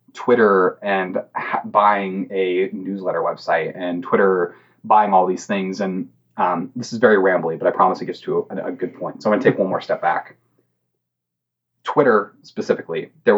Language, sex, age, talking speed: English, male, 30-49, 175 wpm